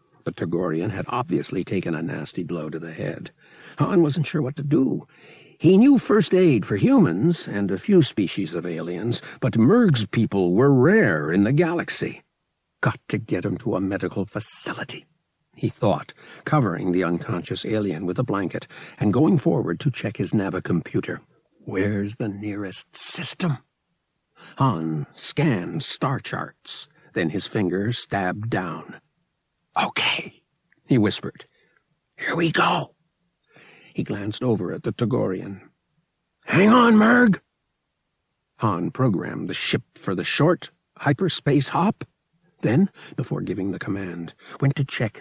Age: 60-79